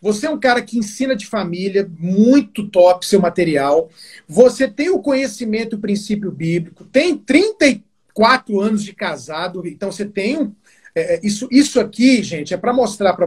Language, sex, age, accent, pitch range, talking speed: Portuguese, male, 40-59, Brazilian, 180-245 Hz, 170 wpm